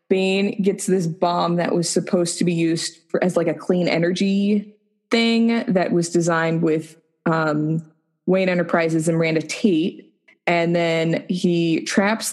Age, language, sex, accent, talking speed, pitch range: 20-39, English, female, American, 145 wpm, 165-195 Hz